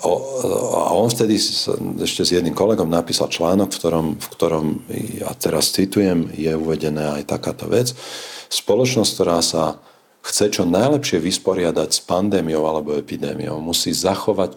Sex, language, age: male, Slovak, 50-69